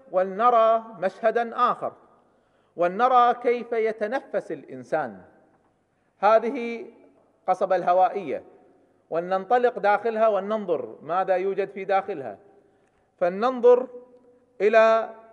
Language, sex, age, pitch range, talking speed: Arabic, male, 40-59, 195-245 Hz, 75 wpm